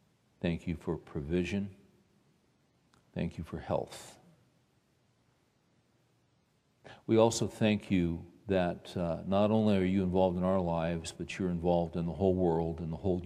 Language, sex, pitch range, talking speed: English, male, 85-95 Hz, 145 wpm